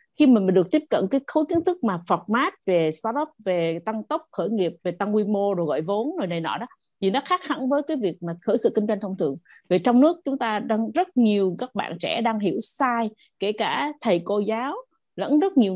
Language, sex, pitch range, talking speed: Vietnamese, female, 190-275 Hz, 250 wpm